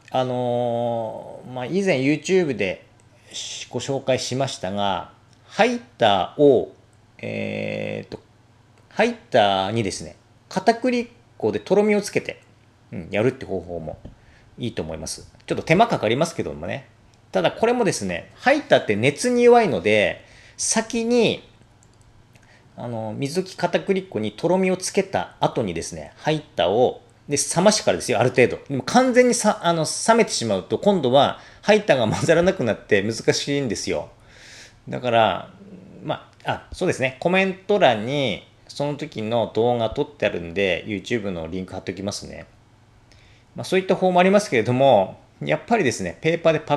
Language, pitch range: Japanese, 115-185 Hz